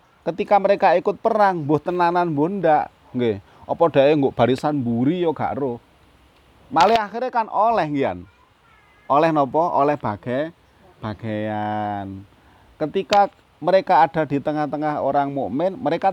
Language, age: Indonesian, 30-49